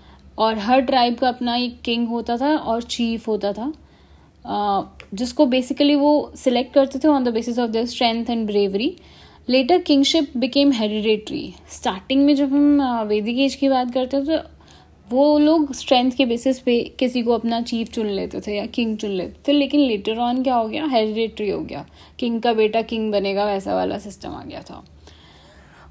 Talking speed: 185 wpm